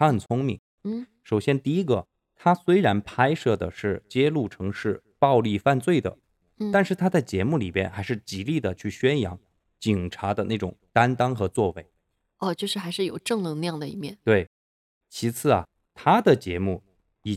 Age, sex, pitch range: 20-39, male, 95-150 Hz